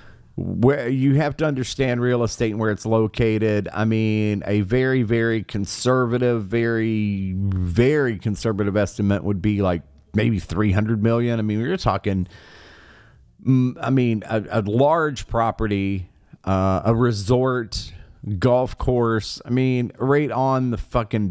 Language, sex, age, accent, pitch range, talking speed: English, male, 40-59, American, 105-125 Hz, 140 wpm